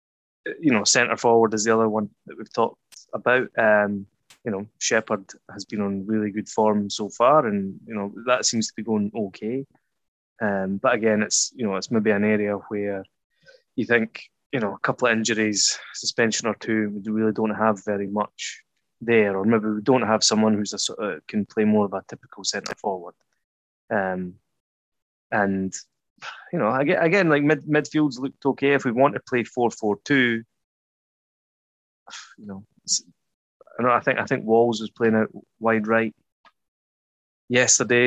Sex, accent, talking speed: male, British, 180 wpm